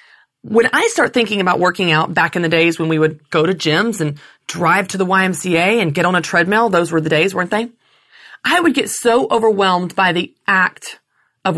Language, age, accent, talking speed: English, 30-49, American, 220 wpm